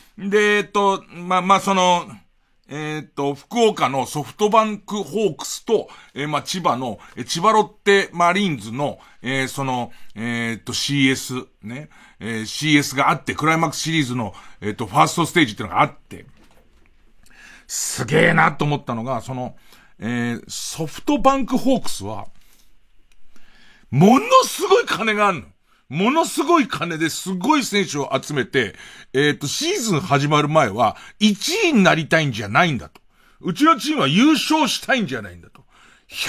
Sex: male